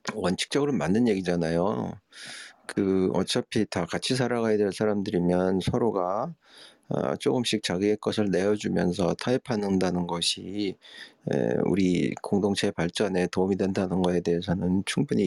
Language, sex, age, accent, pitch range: Korean, male, 40-59, native, 95-140 Hz